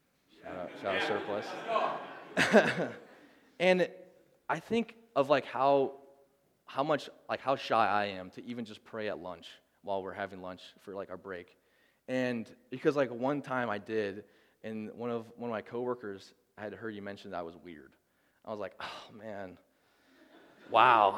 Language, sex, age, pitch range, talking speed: English, male, 20-39, 110-150 Hz, 160 wpm